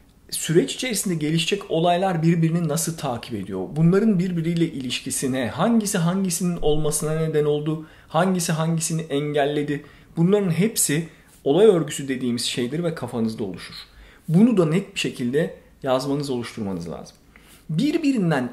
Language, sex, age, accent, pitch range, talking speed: Turkish, male, 50-69, native, 140-190 Hz, 120 wpm